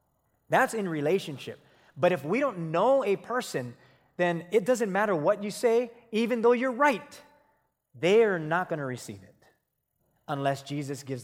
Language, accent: English, American